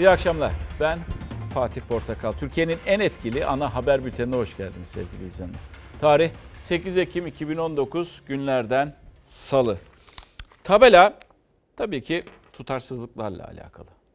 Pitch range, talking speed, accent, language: 110-155 Hz, 110 wpm, native, Turkish